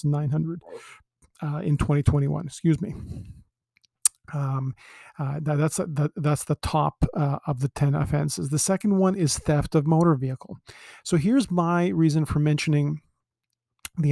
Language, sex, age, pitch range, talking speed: English, male, 40-59, 145-170 Hz, 135 wpm